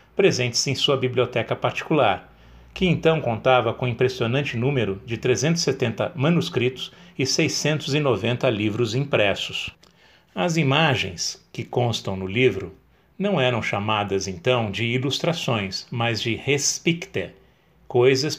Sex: male